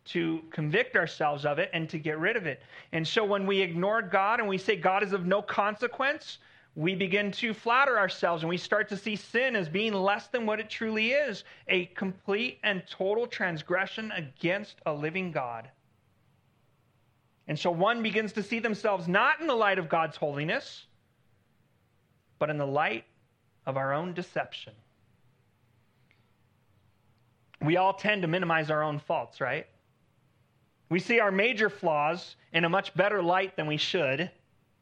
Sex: male